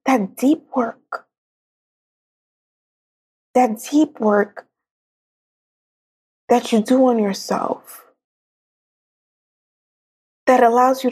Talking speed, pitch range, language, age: 75 wpm, 230-280 Hz, English, 20-39